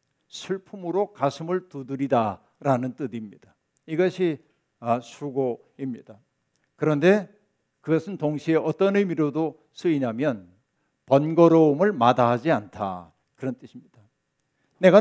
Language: Korean